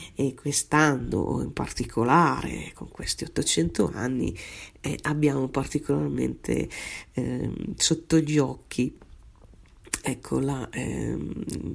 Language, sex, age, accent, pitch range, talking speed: Italian, female, 40-59, native, 135-165 Hz, 90 wpm